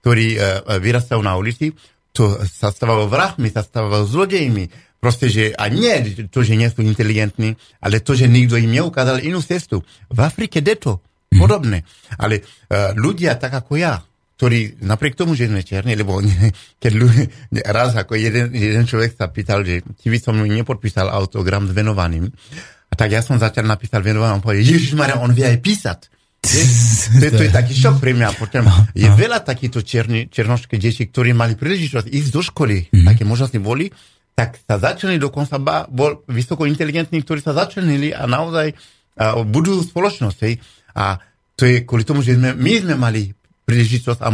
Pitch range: 110-135 Hz